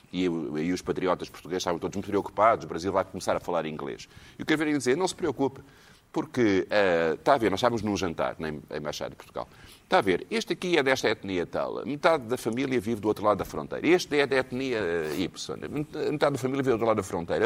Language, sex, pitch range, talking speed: Portuguese, male, 115-155 Hz, 250 wpm